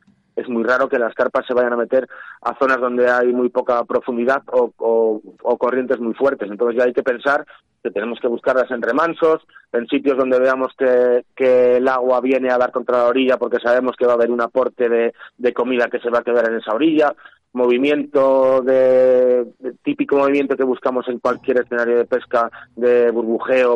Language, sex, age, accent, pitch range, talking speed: Spanish, male, 30-49, Spanish, 120-135 Hz, 205 wpm